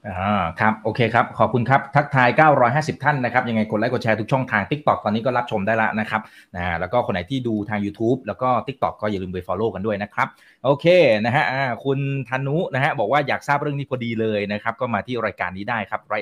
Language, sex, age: Thai, male, 20-39